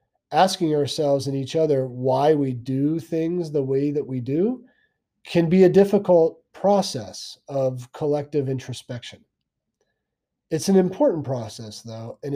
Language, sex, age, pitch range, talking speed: English, male, 40-59, 120-155 Hz, 135 wpm